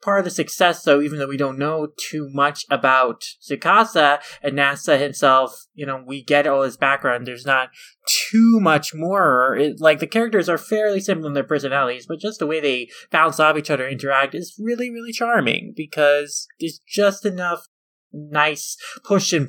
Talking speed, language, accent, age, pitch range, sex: 180 wpm, English, American, 20-39, 145-175 Hz, male